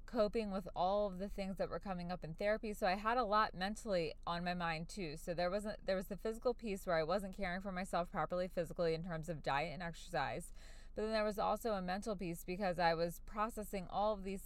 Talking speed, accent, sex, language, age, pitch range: 245 wpm, American, female, English, 20-39, 165-205 Hz